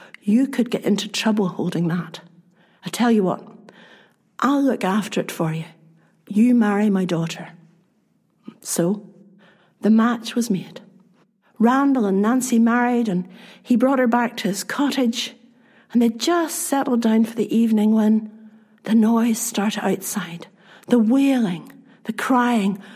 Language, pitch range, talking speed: English, 200-240 Hz, 145 wpm